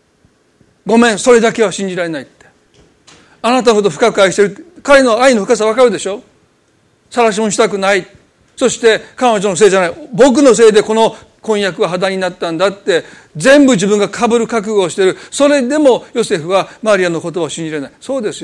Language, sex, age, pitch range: Japanese, male, 40-59, 190-240 Hz